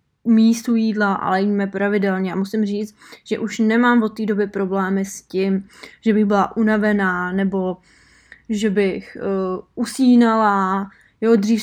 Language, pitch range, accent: Czech, 200-230 Hz, native